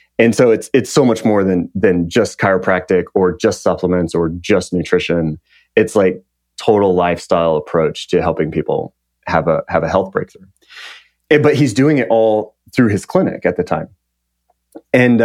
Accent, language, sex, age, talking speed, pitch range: American, English, male, 30-49, 175 wpm, 95-120 Hz